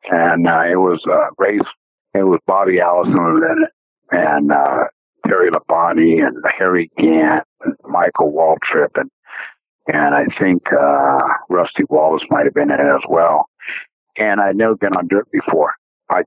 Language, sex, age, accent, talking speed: English, male, 60-79, American, 160 wpm